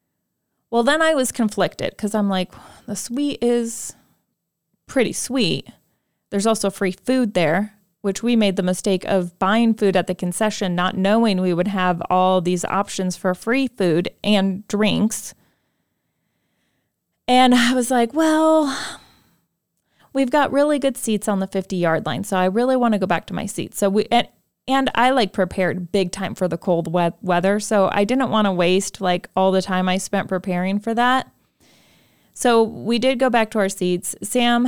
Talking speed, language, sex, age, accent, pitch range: 180 wpm, English, female, 30-49, American, 185-235 Hz